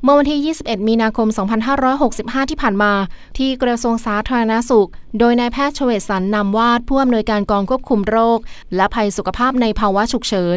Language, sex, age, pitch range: Thai, female, 20-39, 200-240 Hz